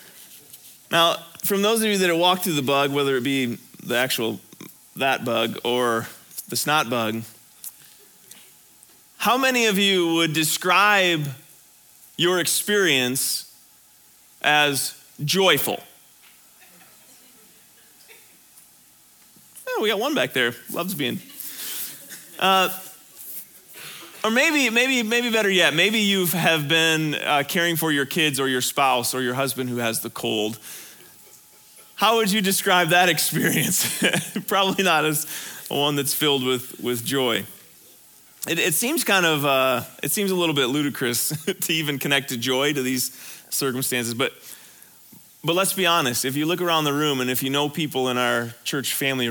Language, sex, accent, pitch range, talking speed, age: English, male, American, 130-180 Hz, 145 wpm, 30-49